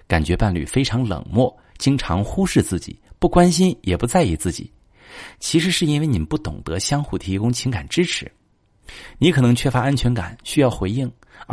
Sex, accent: male, native